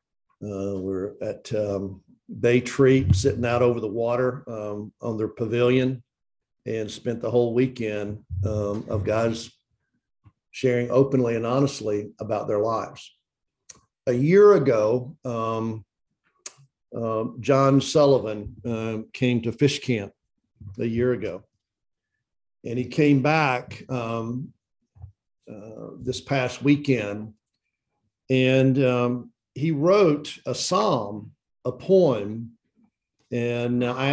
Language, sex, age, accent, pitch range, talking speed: English, male, 50-69, American, 110-135 Hz, 115 wpm